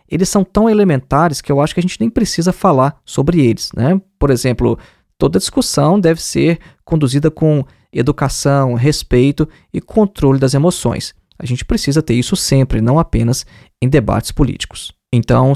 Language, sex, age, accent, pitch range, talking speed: Portuguese, male, 20-39, Brazilian, 125-165 Hz, 160 wpm